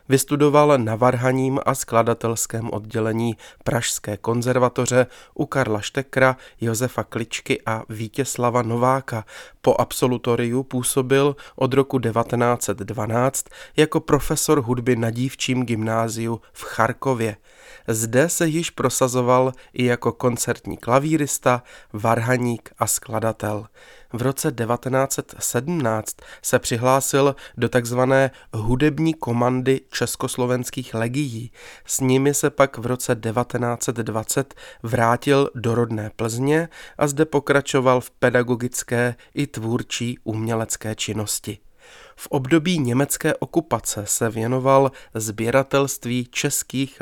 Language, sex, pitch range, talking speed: Czech, male, 115-135 Hz, 100 wpm